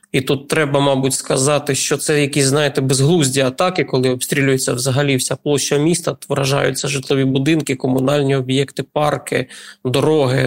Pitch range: 135-155 Hz